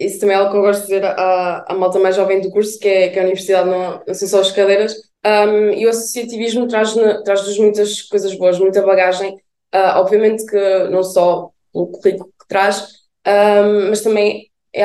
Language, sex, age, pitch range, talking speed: Portuguese, female, 20-39, 195-215 Hz, 205 wpm